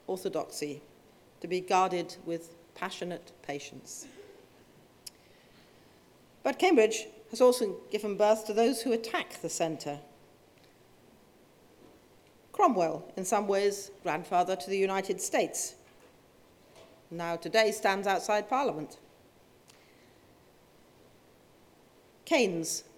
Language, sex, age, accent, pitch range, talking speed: English, female, 40-59, British, 170-215 Hz, 90 wpm